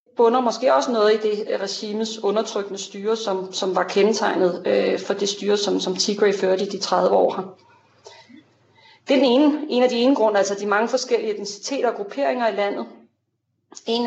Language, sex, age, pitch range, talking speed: Danish, female, 30-49, 195-245 Hz, 180 wpm